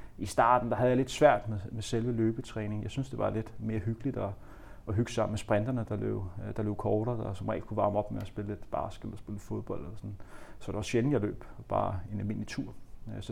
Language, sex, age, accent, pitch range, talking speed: Danish, male, 30-49, native, 105-120 Hz, 255 wpm